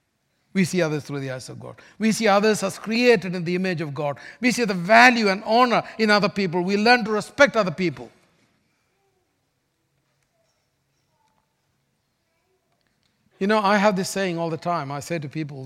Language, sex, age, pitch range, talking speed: English, male, 50-69, 165-240 Hz, 175 wpm